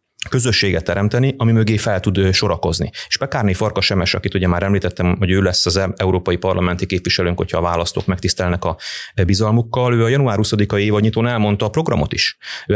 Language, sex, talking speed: Hungarian, male, 185 wpm